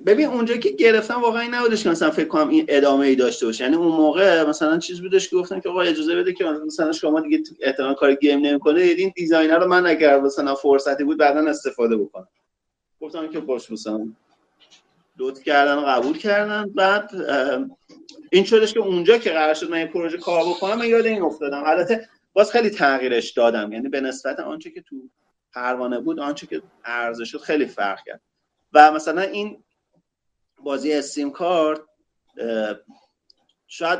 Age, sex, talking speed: 30-49, male, 165 wpm